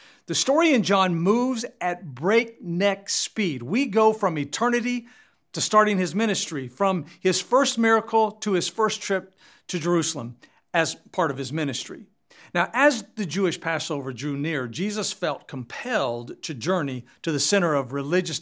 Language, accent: English, American